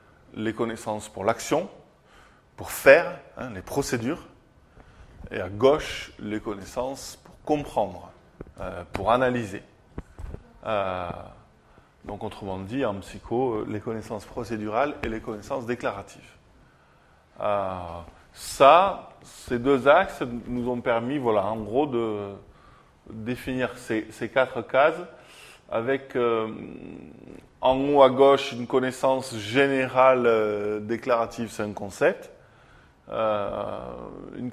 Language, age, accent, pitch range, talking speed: French, 20-39, French, 105-130 Hz, 115 wpm